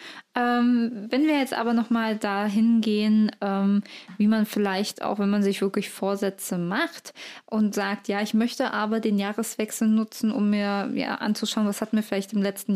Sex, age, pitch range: female, 20-39, 195-230 Hz